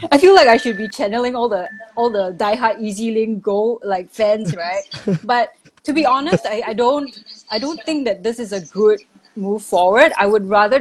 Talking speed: 215 wpm